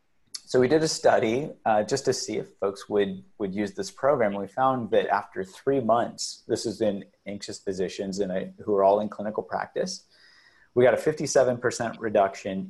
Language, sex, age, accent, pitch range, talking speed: English, male, 30-49, American, 95-115 Hz, 180 wpm